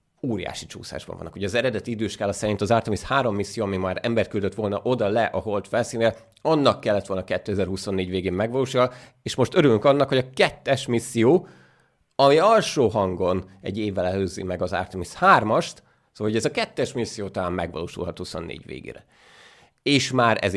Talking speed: 170 wpm